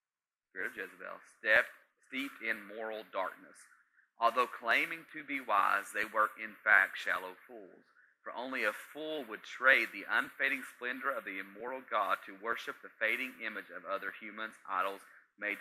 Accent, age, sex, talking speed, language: American, 30-49, male, 155 wpm, English